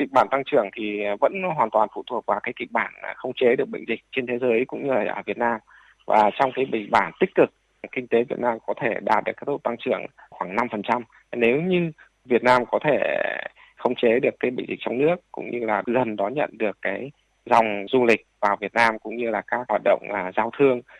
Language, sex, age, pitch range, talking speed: Vietnamese, male, 20-39, 105-125 Hz, 245 wpm